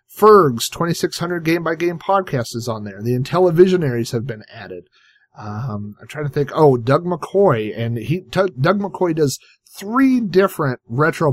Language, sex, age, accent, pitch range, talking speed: English, male, 40-59, American, 120-155 Hz, 170 wpm